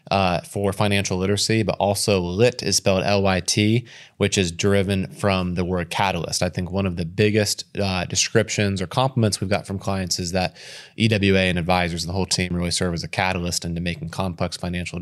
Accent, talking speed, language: American, 195 wpm, English